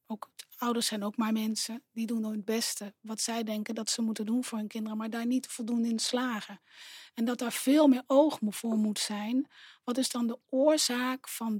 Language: Dutch